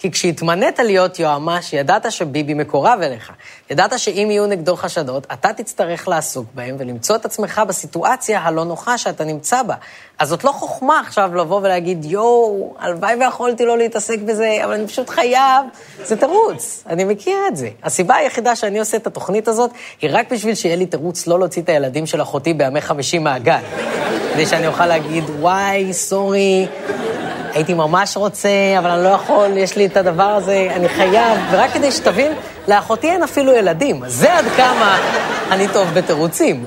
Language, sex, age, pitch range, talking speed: Hebrew, female, 20-39, 170-230 Hz, 165 wpm